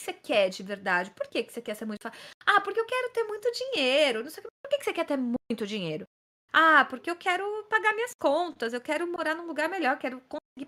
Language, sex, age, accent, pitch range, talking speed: Portuguese, female, 20-39, Brazilian, 255-370 Hz, 255 wpm